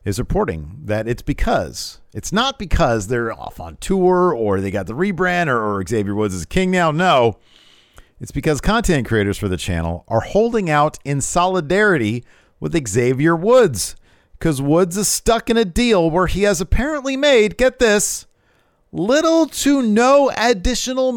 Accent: American